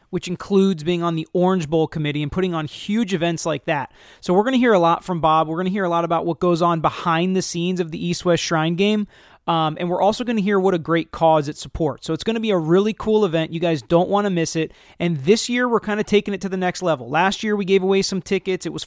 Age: 30-49